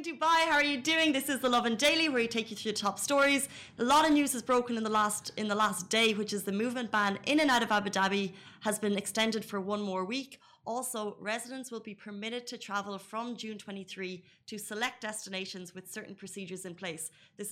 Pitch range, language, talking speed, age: 190-235 Hz, Arabic, 235 wpm, 30-49